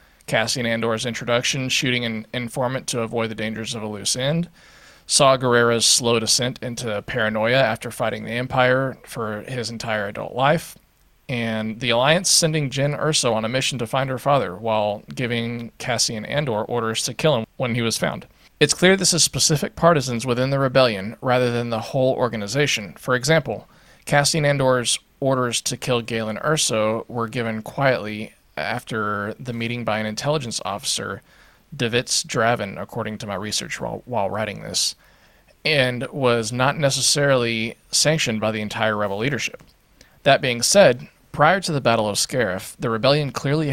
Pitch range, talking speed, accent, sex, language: 115-135 Hz, 165 wpm, American, male, English